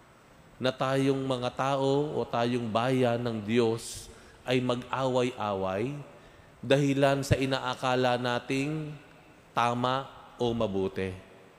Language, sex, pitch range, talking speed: Filipino, male, 115-135 Hz, 95 wpm